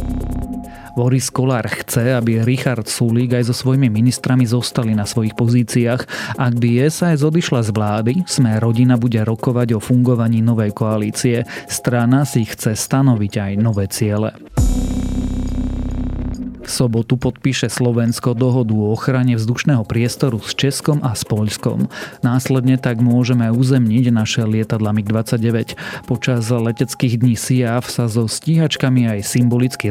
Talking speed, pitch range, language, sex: 130 wpm, 110-130 Hz, Slovak, male